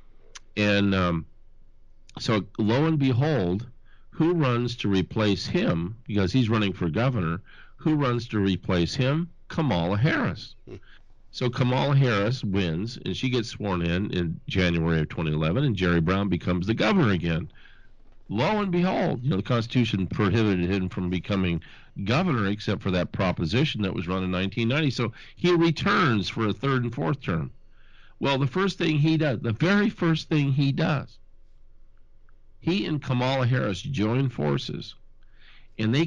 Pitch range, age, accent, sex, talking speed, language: 95-135 Hz, 50-69, American, male, 155 wpm, English